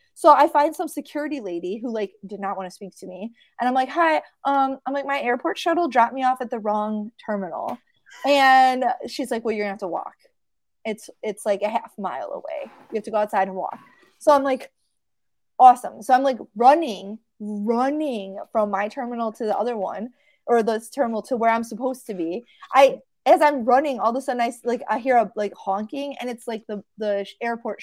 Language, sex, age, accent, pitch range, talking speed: English, female, 20-39, American, 215-290 Hz, 220 wpm